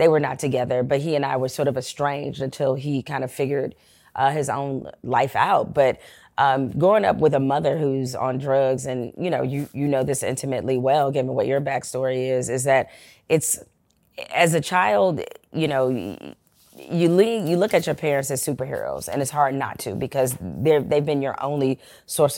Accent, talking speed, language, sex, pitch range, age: American, 200 wpm, English, female, 135-155 Hz, 30-49